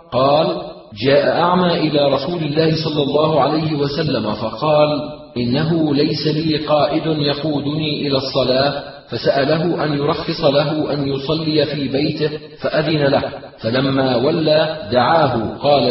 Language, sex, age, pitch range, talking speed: Arabic, male, 40-59, 135-155 Hz, 120 wpm